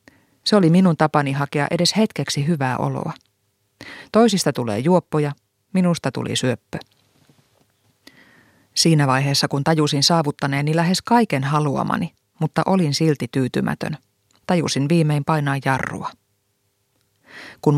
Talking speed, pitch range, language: 110 wpm, 135-165 Hz, Finnish